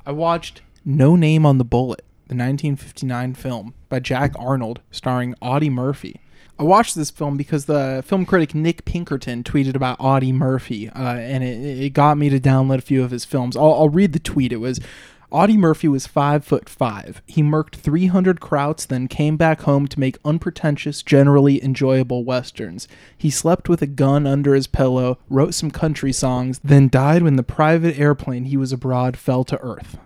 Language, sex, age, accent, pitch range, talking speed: English, male, 20-39, American, 130-155 Hz, 190 wpm